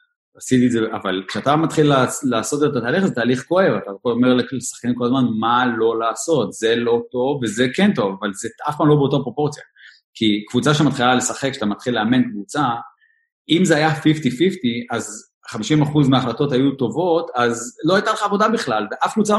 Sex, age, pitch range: male, 30-49, 120-160 Hz